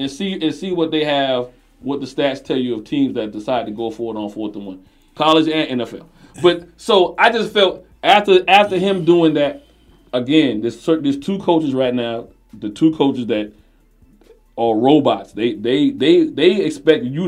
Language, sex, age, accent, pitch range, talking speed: English, male, 40-59, American, 125-165 Hz, 195 wpm